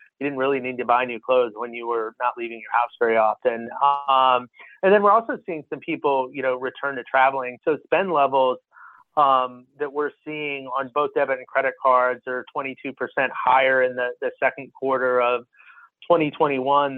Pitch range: 125-145 Hz